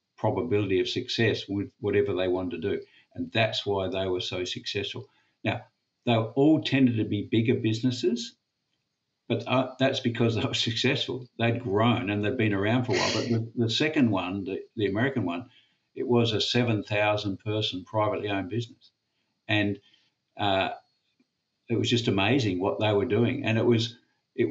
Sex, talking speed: male, 175 wpm